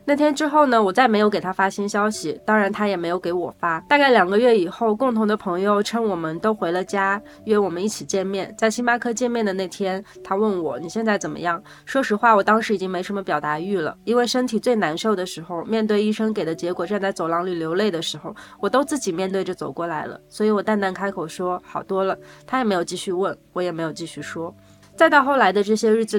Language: Chinese